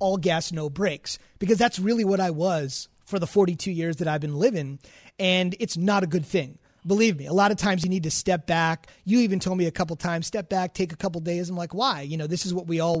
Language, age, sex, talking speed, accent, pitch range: English, 30-49, male, 270 wpm, American, 160-200 Hz